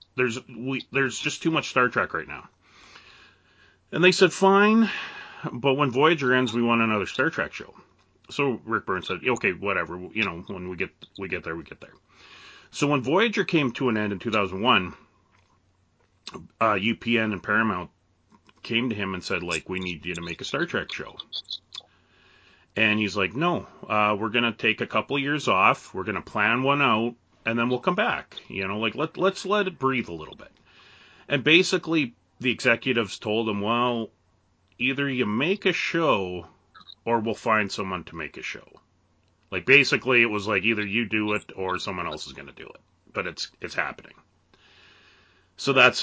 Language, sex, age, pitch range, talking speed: English, male, 30-49, 95-130 Hz, 195 wpm